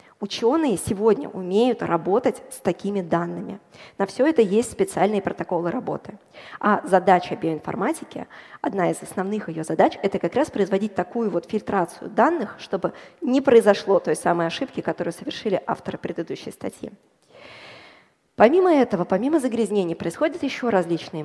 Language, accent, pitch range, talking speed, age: Russian, native, 190-255 Hz, 135 wpm, 20-39